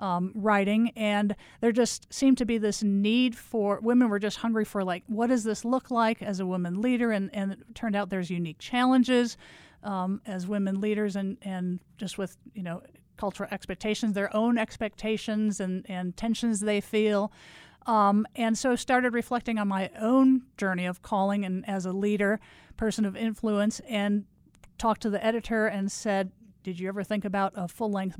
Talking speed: 185 wpm